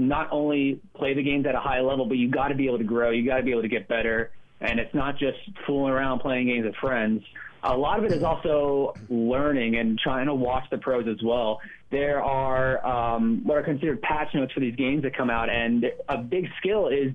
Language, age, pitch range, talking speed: English, 30-49, 120-145 Hz, 240 wpm